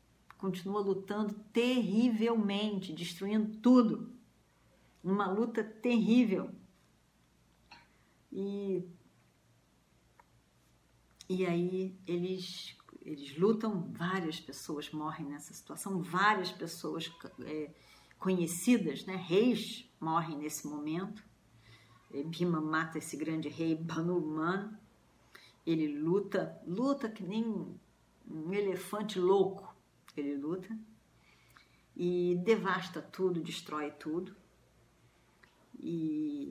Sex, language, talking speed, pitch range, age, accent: female, Portuguese, 80 wpm, 155-195 Hz, 50-69, Brazilian